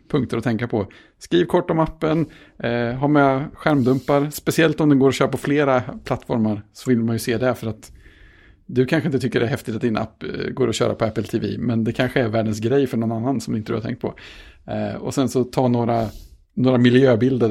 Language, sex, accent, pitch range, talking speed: Swedish, male, Norwegian, 105-130 Hz, 235 wpm